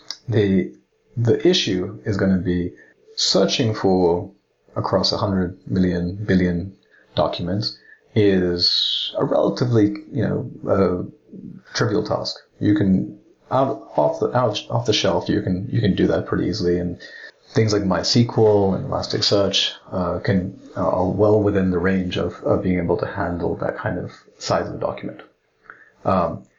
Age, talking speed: 30-49, 150 wpm